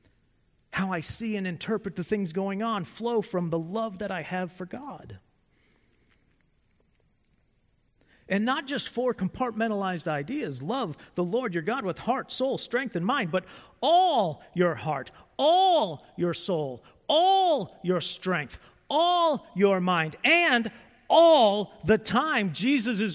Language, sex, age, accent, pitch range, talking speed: English, male, 40-59, American, 180-255 Hz, 135 wpm